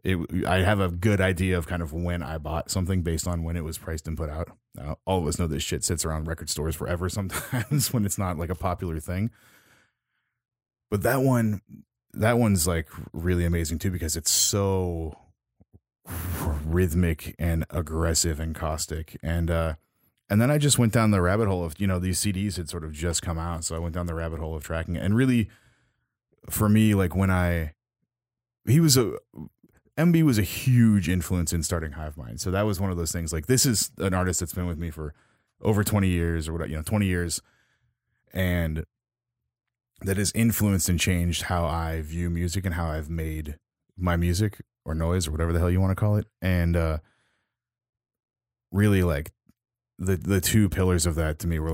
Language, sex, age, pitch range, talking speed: English, male, 30-49, 80-100 Hz, 205 wpm